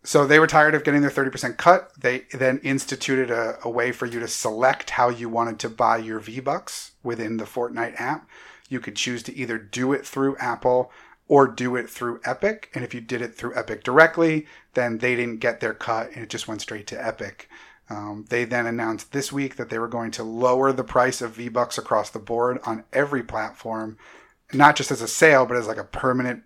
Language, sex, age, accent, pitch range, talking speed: English, male, 30-49, American, 115-130 Hz, 220 wpm